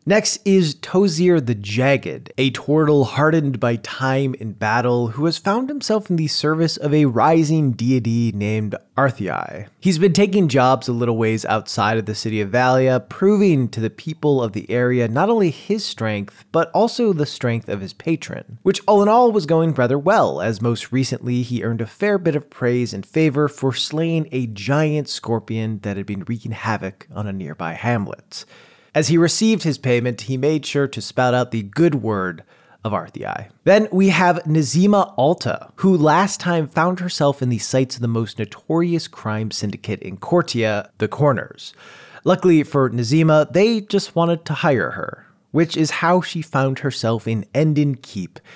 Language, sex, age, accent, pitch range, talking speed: English, male, 20-39, American, 115-160 Hz, 180 wpm